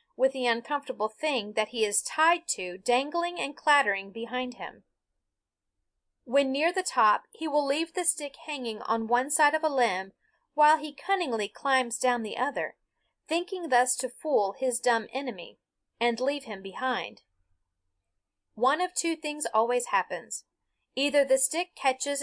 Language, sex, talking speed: English, female, 155 wpm